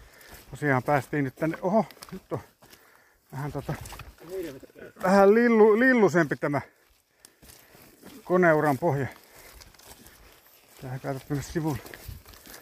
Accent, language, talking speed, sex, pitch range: native, Finnish, 90 wpm, male, 125-155 Hz